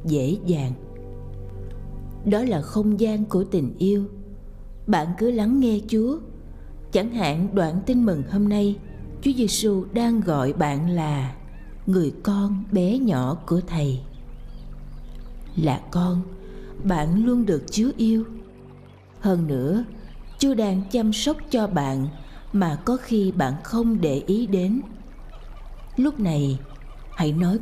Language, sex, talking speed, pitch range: Vietnamese, female, 130 wpm, 145-220 Hz